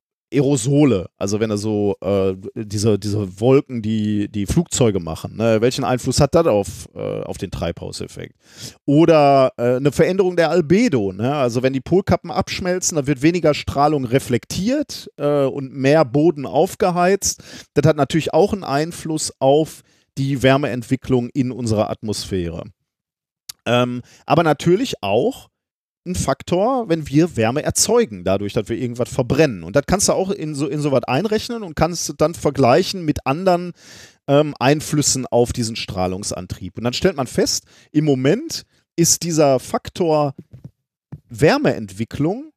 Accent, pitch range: German, 120-165 Hz